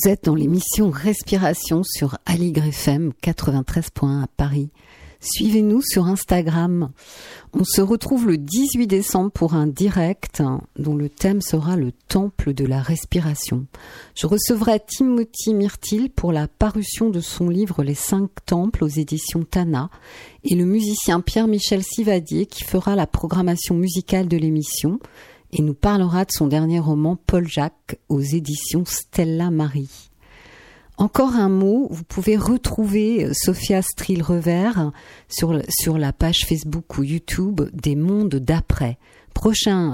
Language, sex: French, female